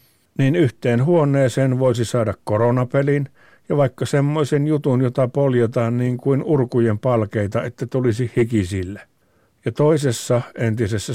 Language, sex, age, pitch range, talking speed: Finnish, male, 60-79, 110-130 Hz, 120 wpm